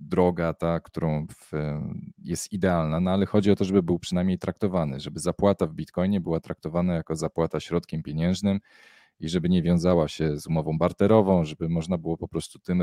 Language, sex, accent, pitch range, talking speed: Polish, male, native, 80-95 Hz, 180 wpm